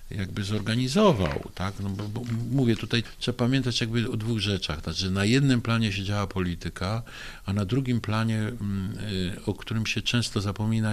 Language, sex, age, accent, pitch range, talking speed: Polish, male, 50-69, native, 90-110 Hz, 170 wpm